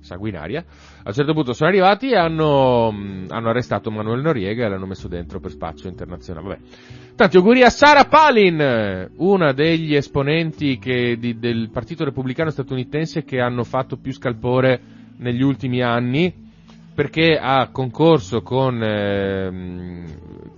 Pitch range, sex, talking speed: 100-145 Hz, male, 140 wpm